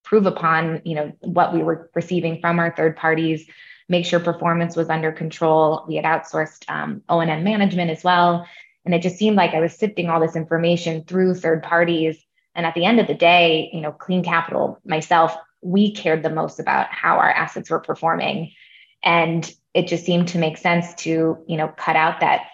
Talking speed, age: 200 wpm, 20-39